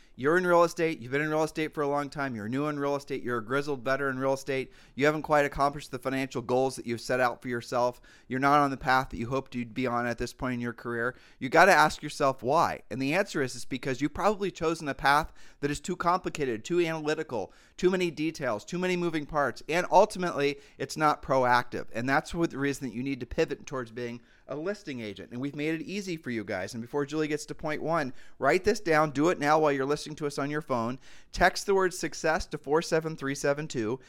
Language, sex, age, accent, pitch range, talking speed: English, male, 30-49, American, 130-160 Hz, 245 wpm